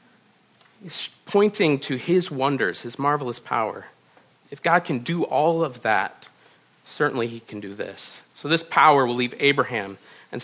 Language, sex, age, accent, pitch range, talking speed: English, male, 40-59, American, 120-145 Hz, 155 wpm